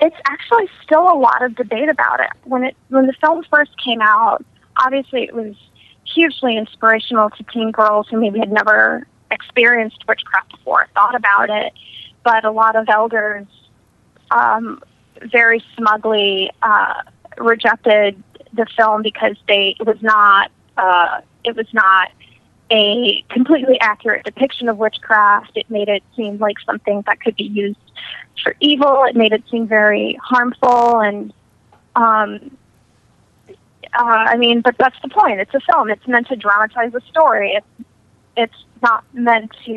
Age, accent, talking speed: 20-39, American, 155 wpm